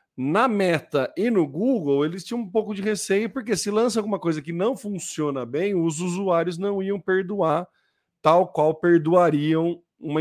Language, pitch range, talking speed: Portuguese, 150-205 Hz, 170 wpm